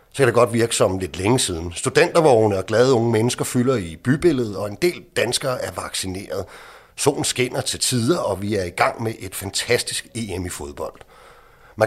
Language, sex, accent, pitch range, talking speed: Danish, male, native, 105-140 Hz, 195 wpm